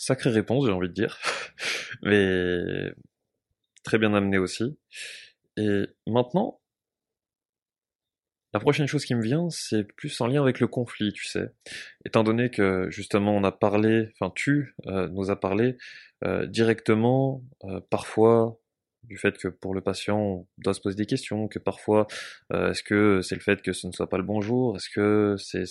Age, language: 20-39, French